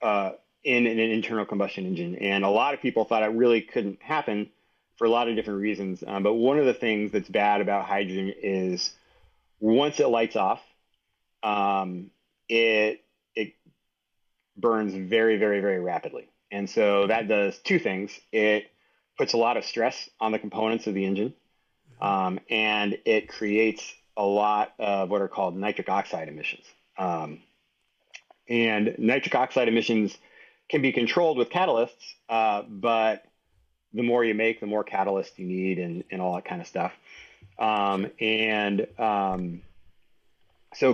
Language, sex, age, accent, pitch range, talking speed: English, male, 30-49, American, 95-115 Hz, 160 wpm